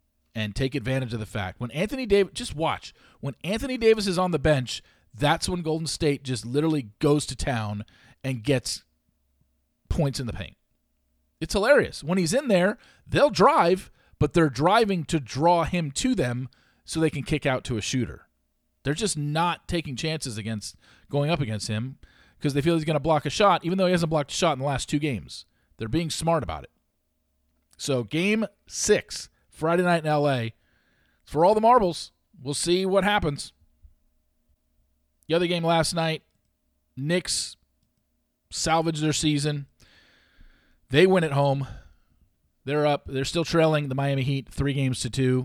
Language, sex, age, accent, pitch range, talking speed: English, male, 40-59, American, 110-165 Hz, 175 wpm